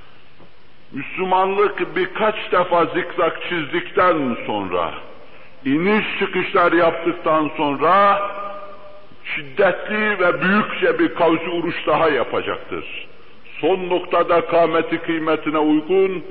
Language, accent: Turkish, native